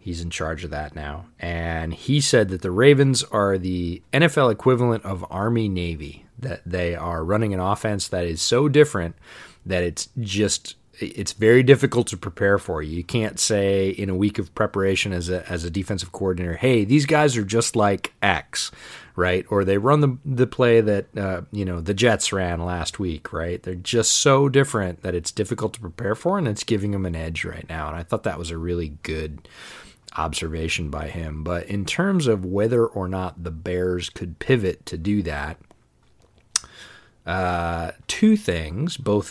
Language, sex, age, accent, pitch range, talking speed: English, male, 30-49, American, 85-110 Hz, 190 wpm